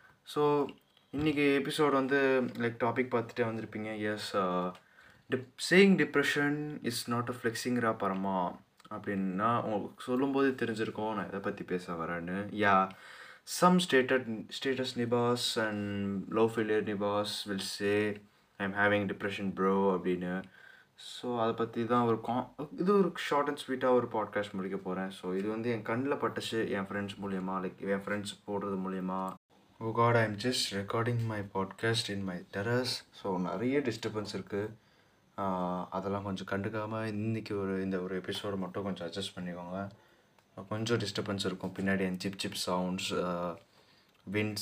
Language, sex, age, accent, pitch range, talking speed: Tamil, male, 20-39, native, 95-120 Hz, 145 wpm